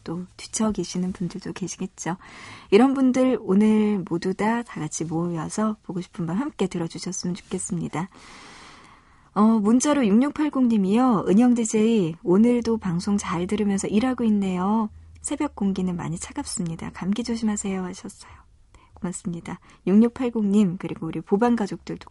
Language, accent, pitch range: Korean, native, 180-235 Hz